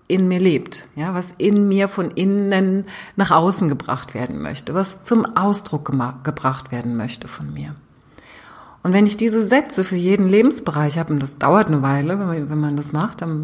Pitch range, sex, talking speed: 155-200 Hz, female, 185 wpm